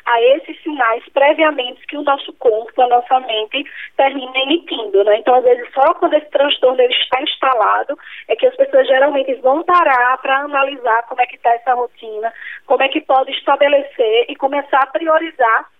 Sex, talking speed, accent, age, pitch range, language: female, 180 wpm, Brazilian, 10-29, 245-300 Hz, Portuguese